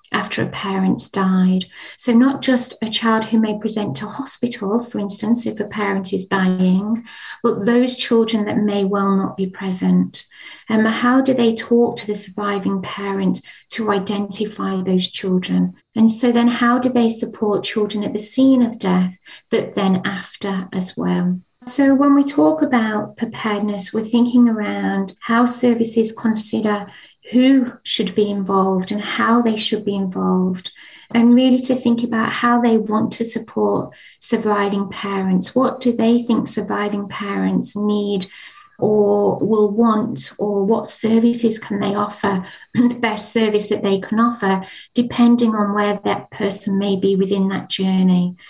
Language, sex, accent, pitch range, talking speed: English, female, British, 195-235 Hz, 160 wpm